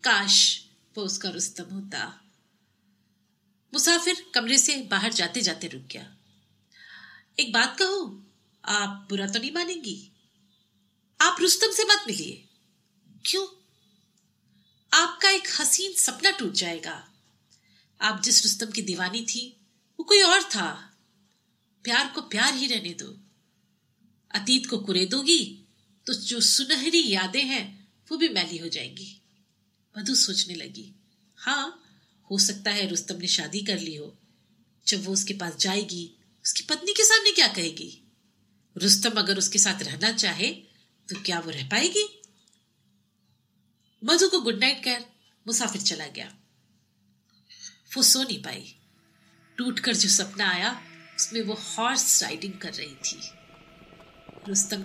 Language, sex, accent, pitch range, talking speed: Hindi, female, native, 195-265 Hz, 130 wpm